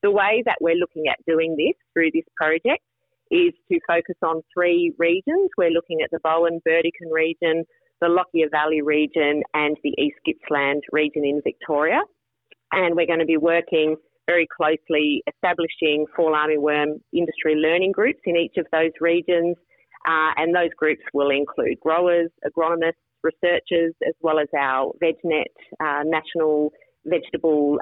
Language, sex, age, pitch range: English, female, 30-49, 150-175 Hz